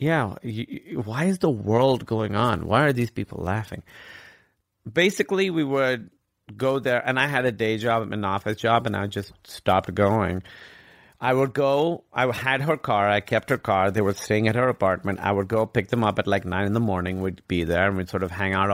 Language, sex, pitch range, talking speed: English, male, 95-120 Hz, 220 wpm